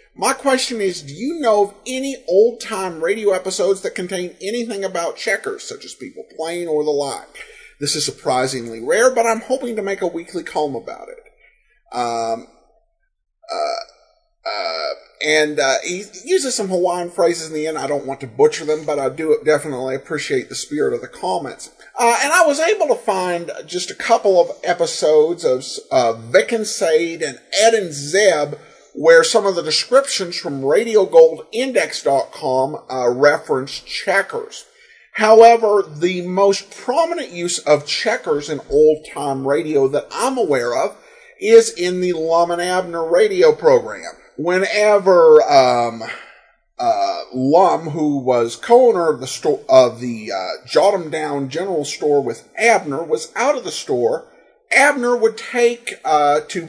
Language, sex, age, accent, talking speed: English, male, 50-69, American, 155 wpm